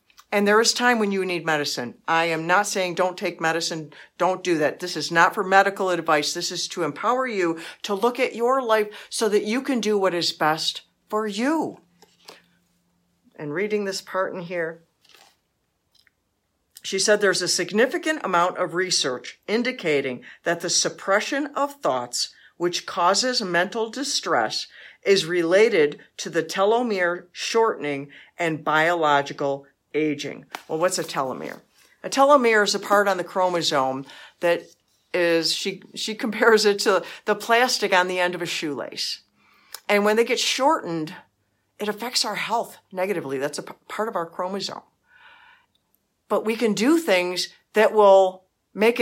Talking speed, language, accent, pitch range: 155 wpm, English, American, 170-235 Hz